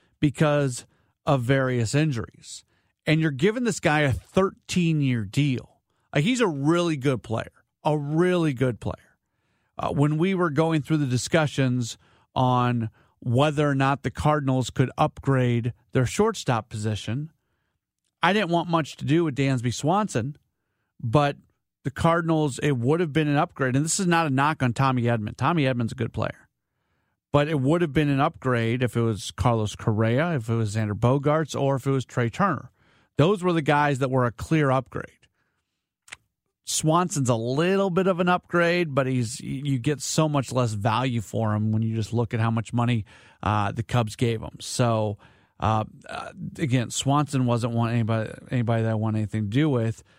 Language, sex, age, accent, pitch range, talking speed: English, male, 40-59, American, 120-160 Hz, 180 wpm